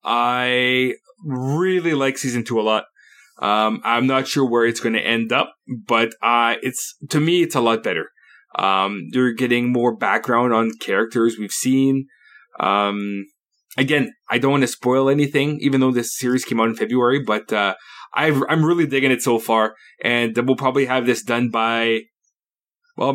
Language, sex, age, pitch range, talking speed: English, male, 20-39, 115-135 Hz, 175 wpm